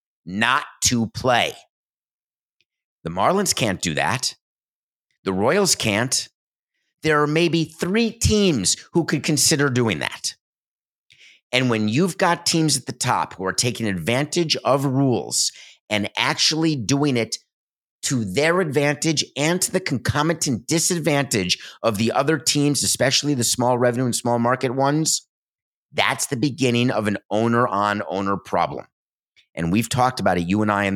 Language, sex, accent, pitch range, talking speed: English, male, American, 105-145 Hz, 145 wpm